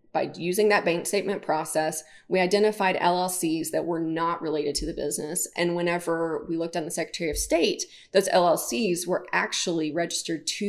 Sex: female